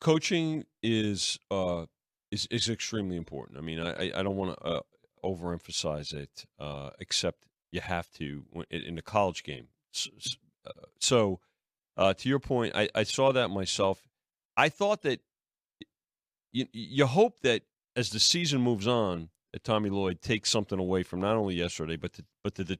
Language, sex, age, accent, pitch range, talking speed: English, male, 40-59, American, 90-115 Hz, 165 wpm